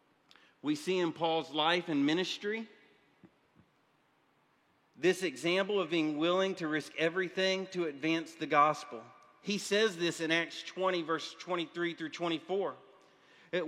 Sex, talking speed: male, 125 wpm